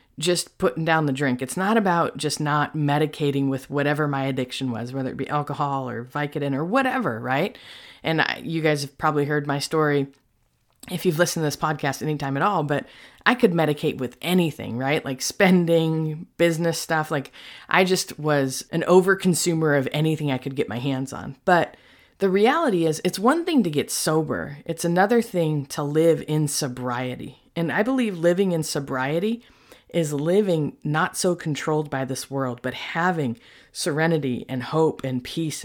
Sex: female